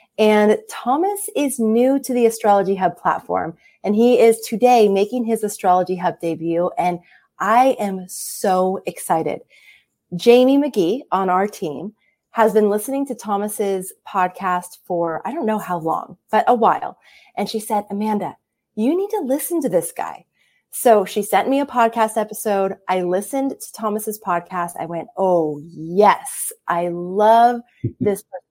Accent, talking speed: American, 155 wpm